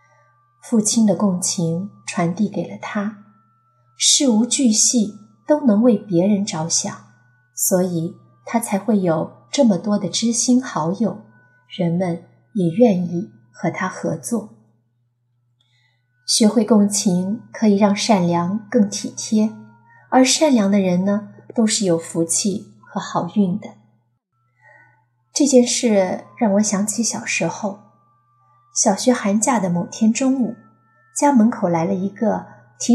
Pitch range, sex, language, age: 165-230 Hz, female, Chinese, 20-39